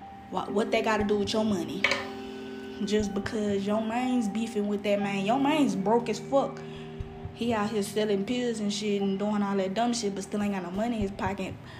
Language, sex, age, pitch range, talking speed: English, female, 10-29, 195-265 Hz, 220 wpm